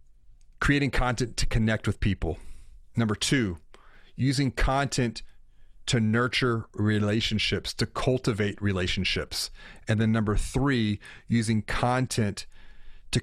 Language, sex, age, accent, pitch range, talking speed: English, male, 40-59, American, 105-130 Hz, 105 wpm